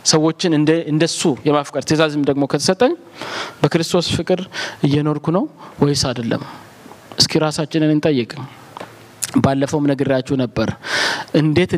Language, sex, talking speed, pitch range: Amharic, male, 100 wpm, 150-205 Hz